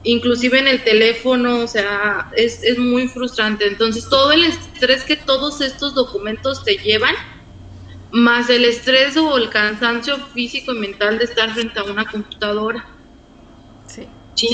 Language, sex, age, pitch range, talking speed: Spanish, female, 20-39, 205-255 Hz, 150 wpm